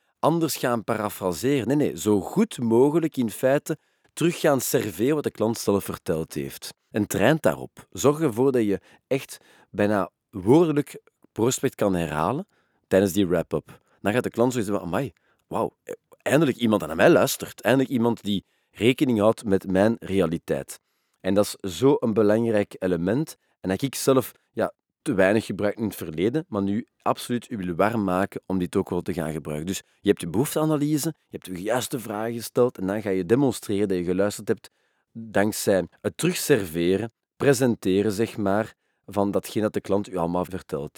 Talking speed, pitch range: 180 wpm, 95-125 Hz